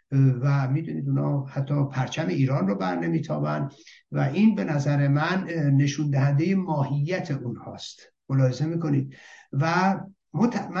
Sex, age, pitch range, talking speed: male, 60-79, 125-160 Hz, 115 wpm